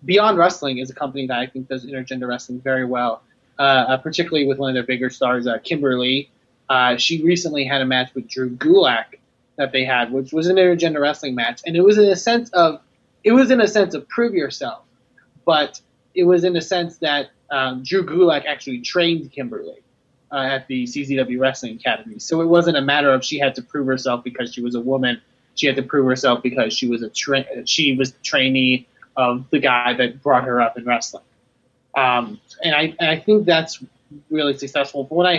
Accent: American